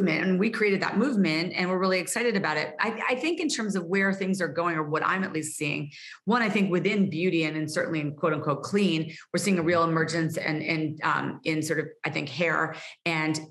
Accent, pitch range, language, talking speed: American, 155-185 Hz, English, 245 wpm